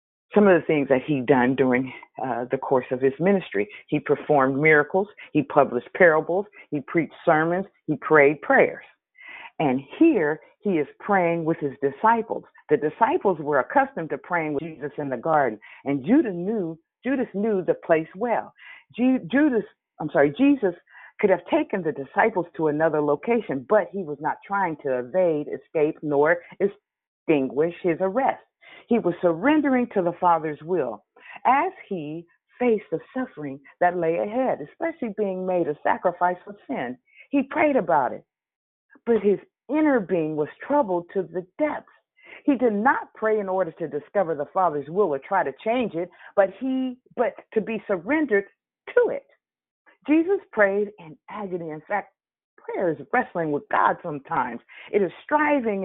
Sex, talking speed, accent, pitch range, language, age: female, 165 wpm, American, 155-245 Hz, English, 50-69